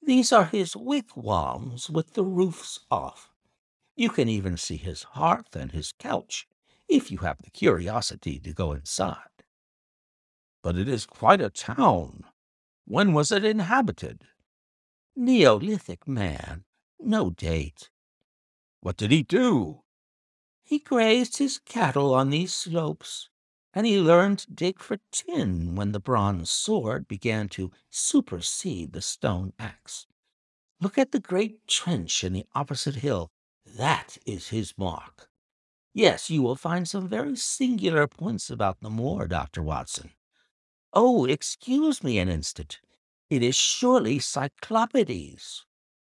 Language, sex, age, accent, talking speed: English, male, 60-79, American, 135 wpm